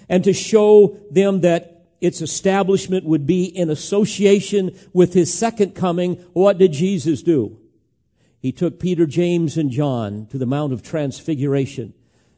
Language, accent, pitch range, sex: English, American, 125-180 Hz, male